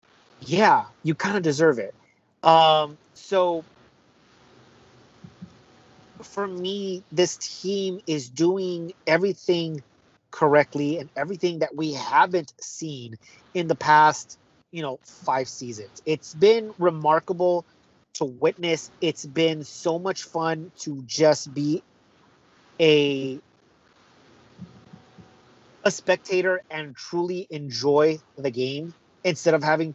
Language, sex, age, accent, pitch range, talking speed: English, male, 30-49, American, 140-175 Hz, 105 wpm